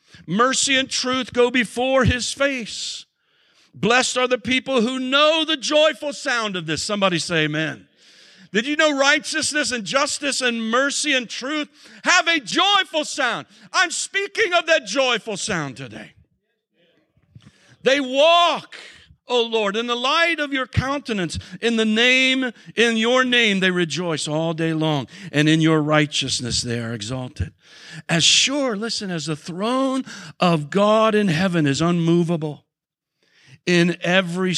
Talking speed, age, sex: 150 wpm, 50-69, male